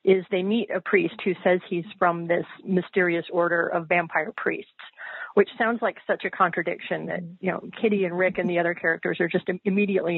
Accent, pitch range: American, 170-195 Hz